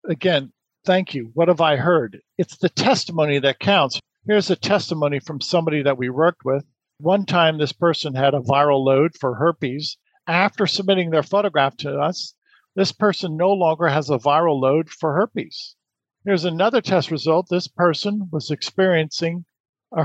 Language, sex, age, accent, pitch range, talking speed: English, male, 50-69, American, 155-195 Hz, 170 wpm